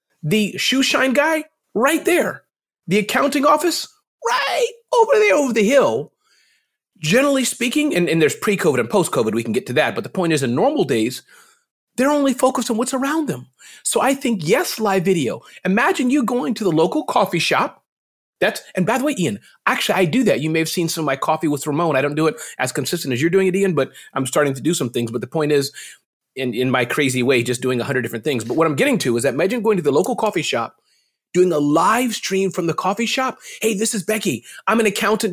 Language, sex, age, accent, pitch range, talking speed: English, male, 30-49, American, 160-245 Hz, 235 wpm